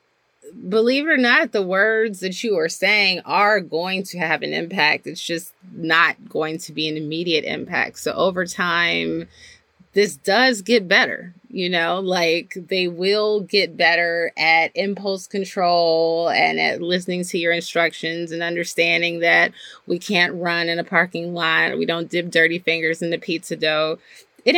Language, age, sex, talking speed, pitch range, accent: English, 20-39, female, 170 wpm, 160-190 Hz, American